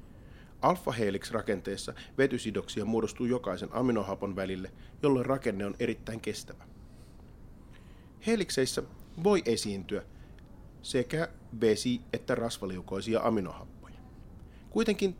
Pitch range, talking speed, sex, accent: 105-145 Hz, 85 wpm, male, native